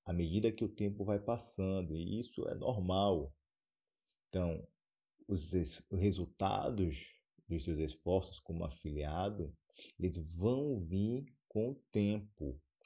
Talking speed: 120 wpm